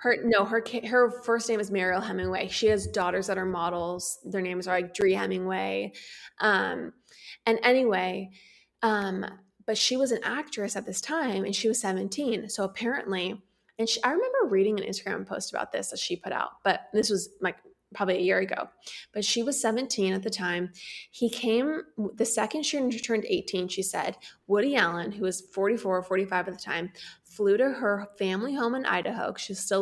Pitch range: 190-230 Hz